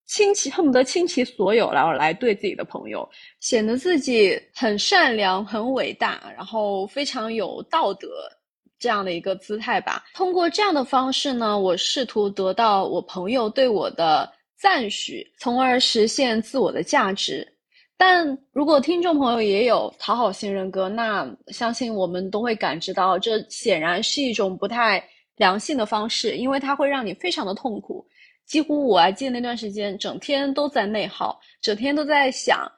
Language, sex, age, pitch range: Chinese, female, 20-39, 210-280 Hz